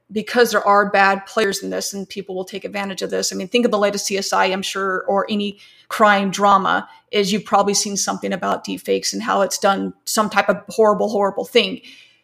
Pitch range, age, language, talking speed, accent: 195-215 Hz, 30-49, English, 215 wpm, American